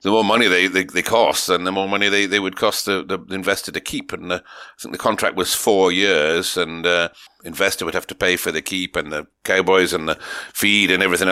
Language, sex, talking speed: English, male, 250 wpm